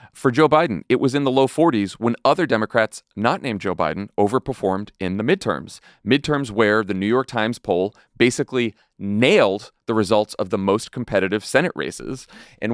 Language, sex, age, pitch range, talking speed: English, male, 30-49, 105-145 Hz, 180 wpm